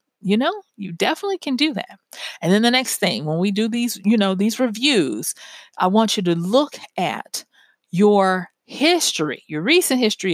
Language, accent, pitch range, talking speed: English, American, 175-245 Hz, 180 wpm